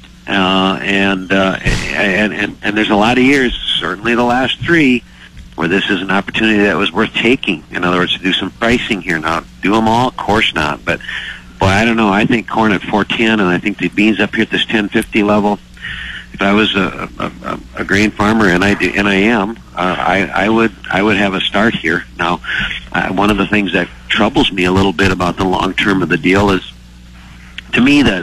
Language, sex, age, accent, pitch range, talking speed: English, male, 50-69, American, 90-105 Hz, 230 wpm